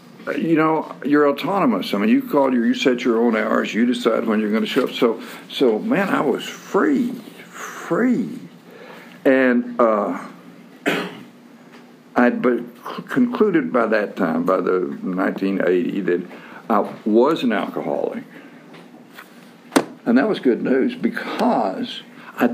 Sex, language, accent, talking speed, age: male, English, American, 140 wpm, 60-79